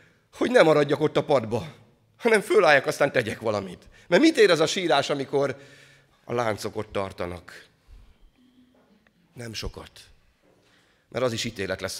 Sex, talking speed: male, 145 wpm